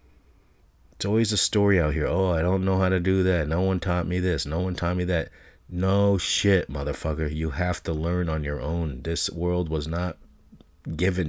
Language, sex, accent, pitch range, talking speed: English, male, American, 75-90 Hz, 205 wpm